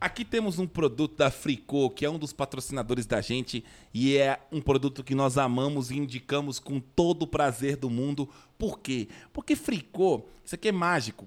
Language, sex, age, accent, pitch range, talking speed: Portuguese, male, 20-39, Brazilian, 135-195 Hz, 190 wpm